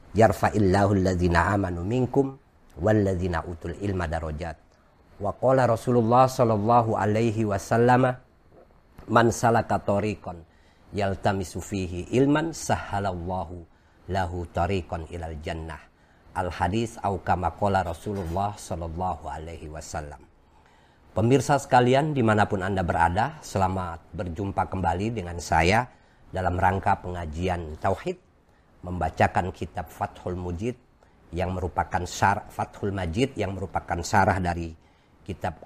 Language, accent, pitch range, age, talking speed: Indonesian, native, 85-110 Hz, 50-69, 60 wpm